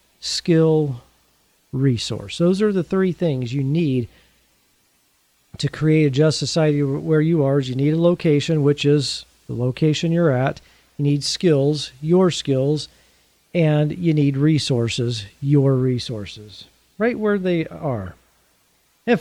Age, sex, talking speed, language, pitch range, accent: 40-59, male, 135 wpm, English, 140-170 Hz, American